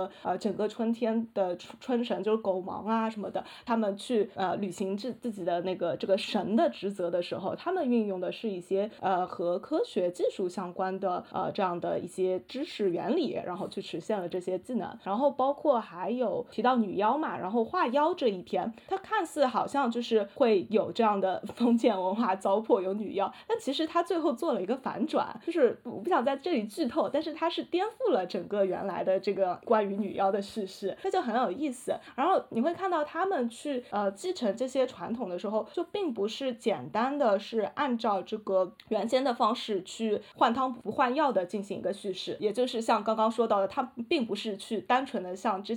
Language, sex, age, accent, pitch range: Chinese, female, 20-39, native, 195-260 Hz